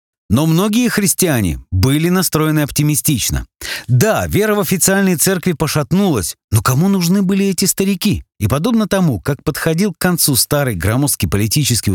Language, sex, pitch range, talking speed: Russian, male, 110-180 Hz, 140 wpm